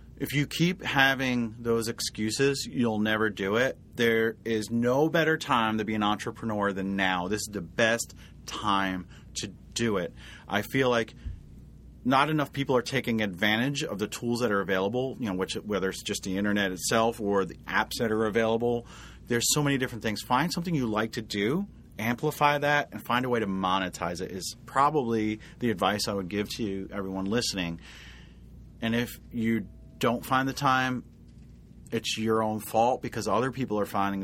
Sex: male